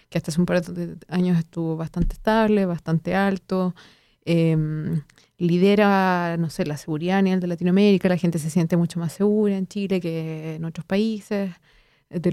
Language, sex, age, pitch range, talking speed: Spanish, female, 30-49, 175-205 Hz, 175 wpm